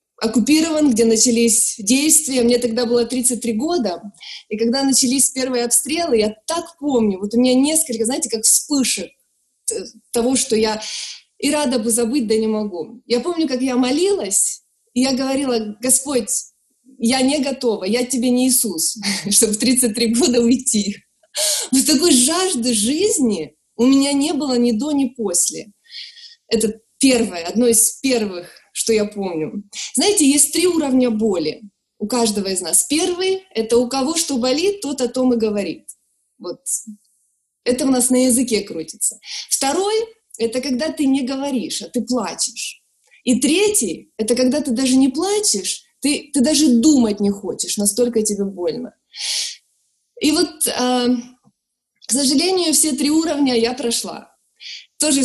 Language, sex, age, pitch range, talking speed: Ukrainian, female, 20-39, 225-285 Hz, 150 wpm